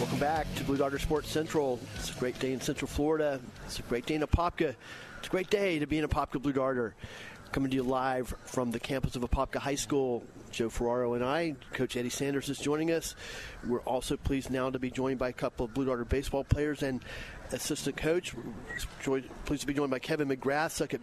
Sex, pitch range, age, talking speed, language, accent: male, 130-155 Hz, 40-59, 220 wpm, English, American